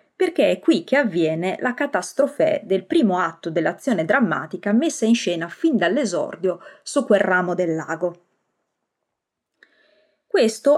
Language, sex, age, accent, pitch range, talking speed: Italian, female, 30-49, native, 180-245 Hz, 130 wpm